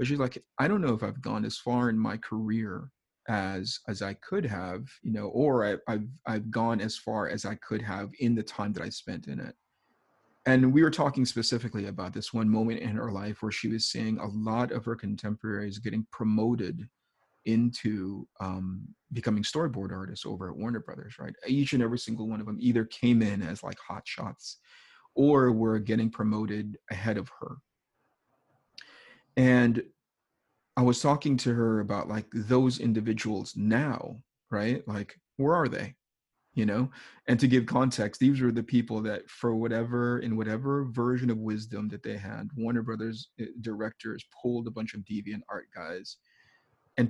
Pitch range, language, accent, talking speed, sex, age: 110-125 Hz, English, American, 180 wpm, male, 30-49